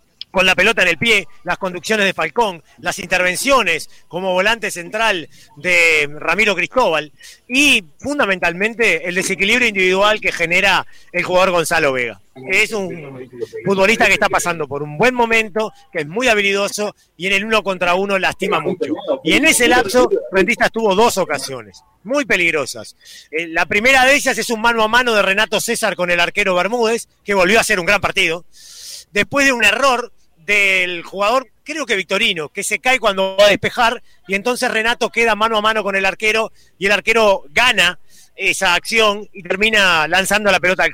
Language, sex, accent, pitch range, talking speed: Spanish, male, Argentinian, 180-225 Hz, 180 wpm